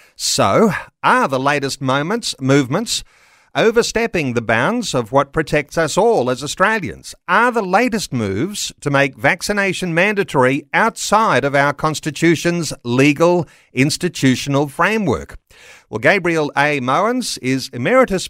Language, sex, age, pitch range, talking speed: English, male, 50-69, 120-160 Hz, 120 wpm